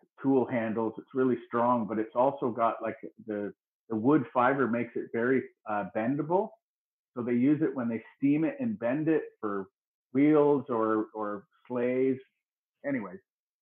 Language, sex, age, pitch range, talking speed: English, male, 50-69, 105-130 Hz, 155 wpm